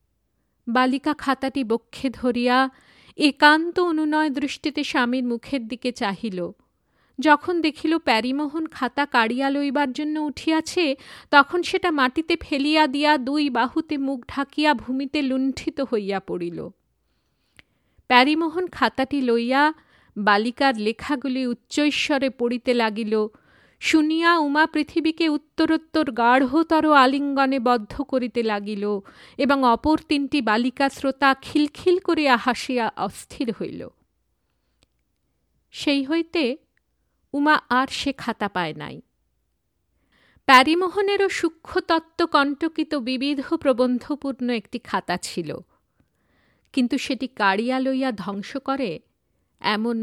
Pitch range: 245-300 Hz